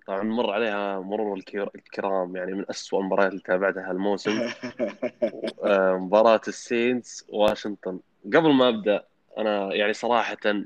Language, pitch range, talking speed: Arabic, 100-130 Hz, 120 wpm